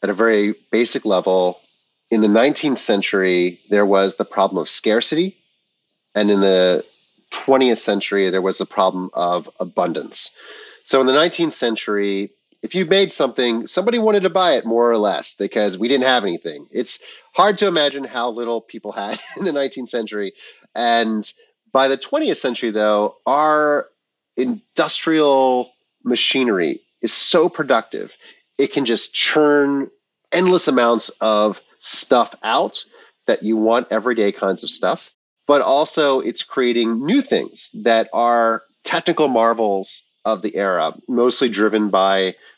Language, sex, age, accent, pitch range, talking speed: English, male, 30-49, American, 100-150 Hz, 145 wpm